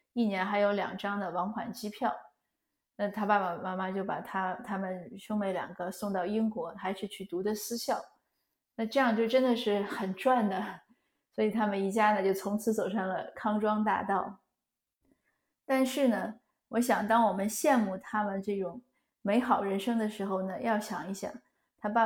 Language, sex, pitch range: Chinese, female, 190-220 Hz